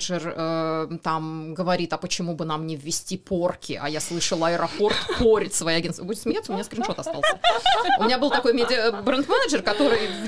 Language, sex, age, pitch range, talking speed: Russian, female, 20-39, 170-220 Hz, 175 wpm